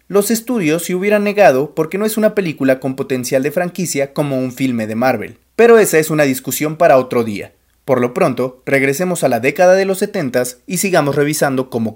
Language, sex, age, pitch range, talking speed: Spanish, male, 30-49, 130-180 Hz, 205 wpm